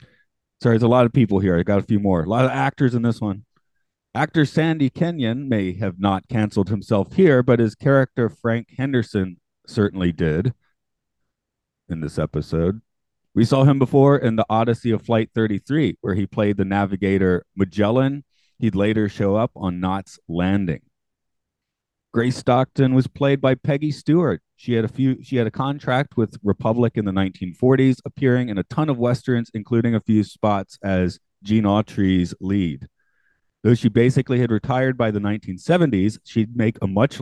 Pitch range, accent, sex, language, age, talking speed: 95-130 Hz, American, male, English, 30-49, 175 wpm